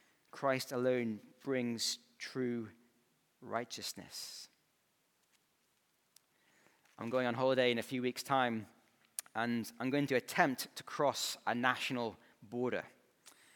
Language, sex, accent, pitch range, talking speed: English, male, British, 125-165 Hz, 105 wpm